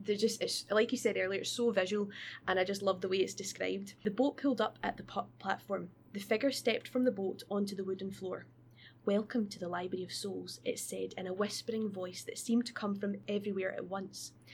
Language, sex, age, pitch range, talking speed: English, female, 20-39, 190-220 Hz, 230 wpm